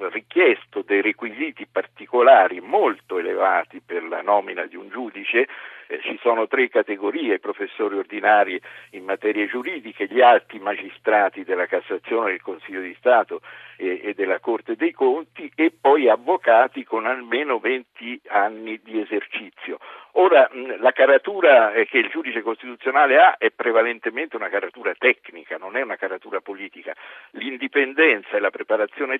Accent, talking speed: native, 145 wpm